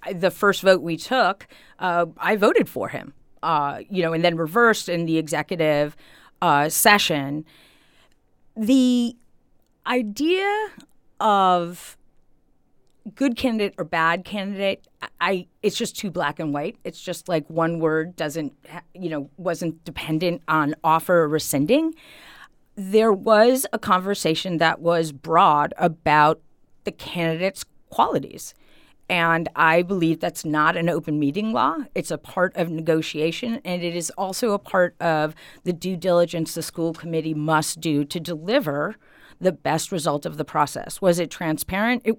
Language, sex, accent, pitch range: English, female, American, 160-195 Hz